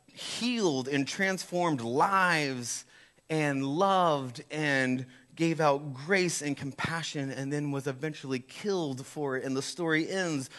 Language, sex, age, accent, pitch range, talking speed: English, male, 30-49, American, 130-160 Hz, 130 wpm